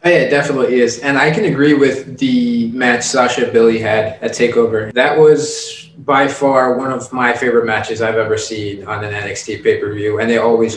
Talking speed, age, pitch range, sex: 205 wpm, 20-39, 120-145 Hz, male